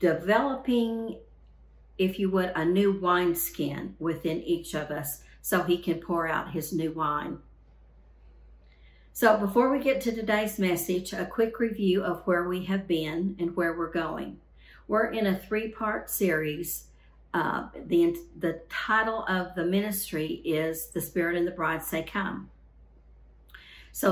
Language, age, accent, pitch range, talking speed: English, 50-69, American, 160-195 Hz, 145 wpm